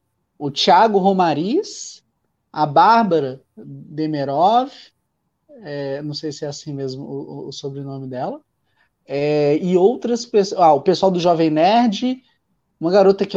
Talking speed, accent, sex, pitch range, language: 135 wpm, Brazilian, male, 160-235 Hz, Portuguese